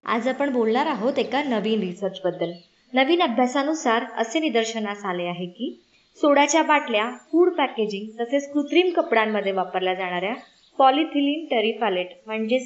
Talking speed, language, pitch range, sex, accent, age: 110 wpm, Marathi, 210-285 Hz, male, native, 20-39